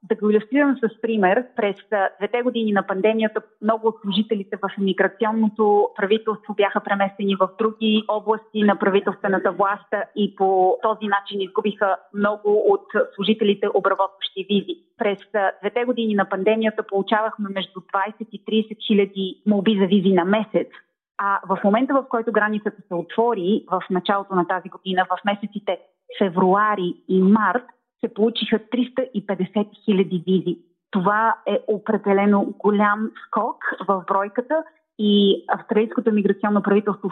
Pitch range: 190-215 Hz